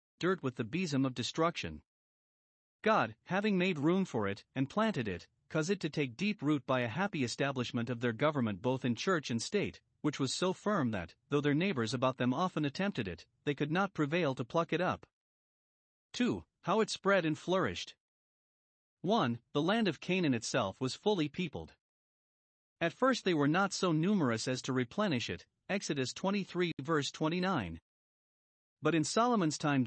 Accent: American